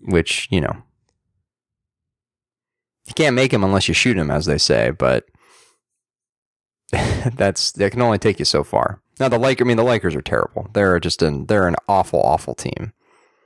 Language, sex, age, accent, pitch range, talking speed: English, male, 30-49, American, 85-110 Hz, 180 wpm